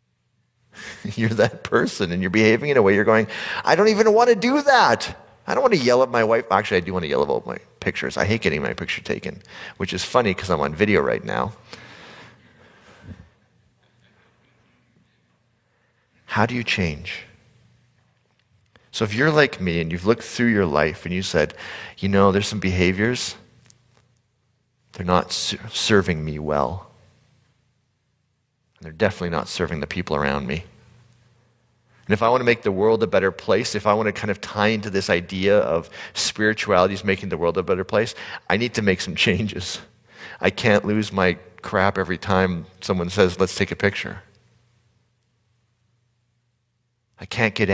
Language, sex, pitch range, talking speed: English, male, 95-120 Hz, 175 wpm